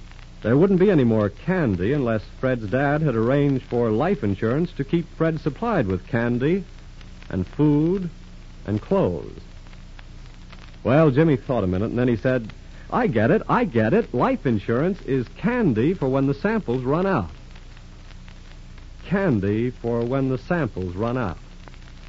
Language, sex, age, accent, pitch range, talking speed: English, male, 70-89, American, 105-175 Hz, 150 wpm